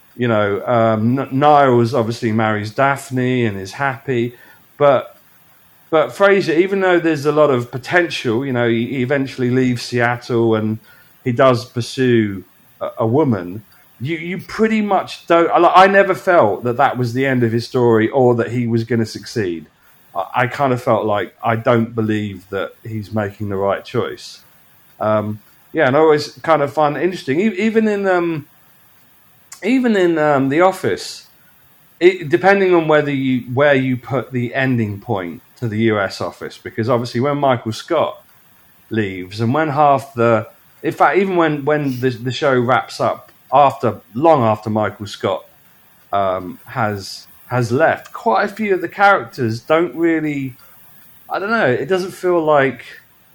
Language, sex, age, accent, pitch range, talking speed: English, male, 40-59, British, 115-155 Hz, 170 wpm